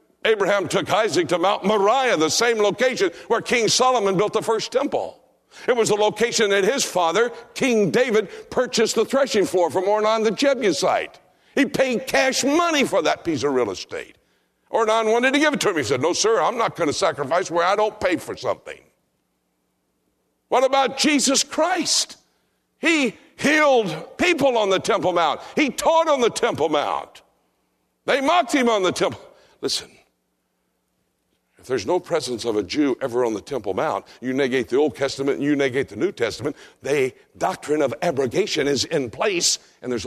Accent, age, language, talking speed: American, 60-79, English, 180 wpm